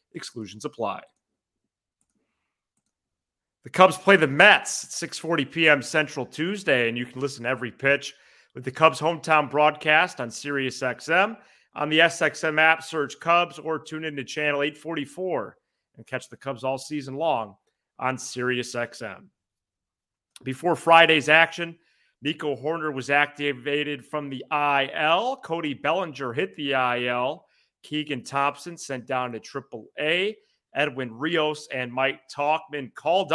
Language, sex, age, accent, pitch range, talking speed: English, male, 30-49, American, 125-155 Hz, 135 wpm